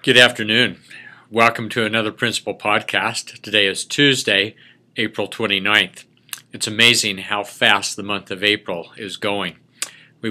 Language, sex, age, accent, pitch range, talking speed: English, male, 50-69, American, 105-125 Hz, 135 wpm